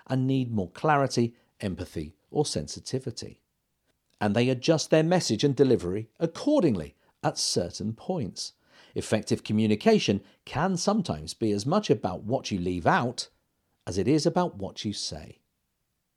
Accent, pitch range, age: British, 105-165 Hz, 50-69